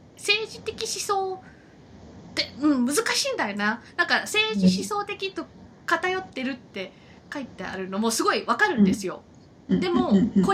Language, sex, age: Japanese, female, 20-39